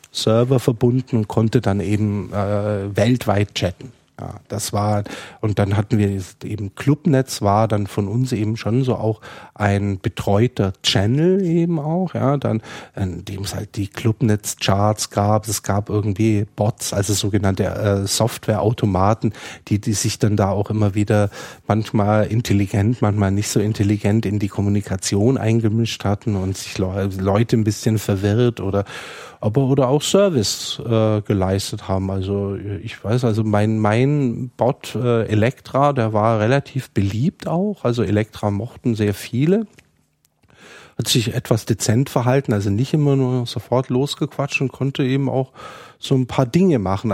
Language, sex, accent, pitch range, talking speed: German, male, German, 100-125 Hz, 155 wpm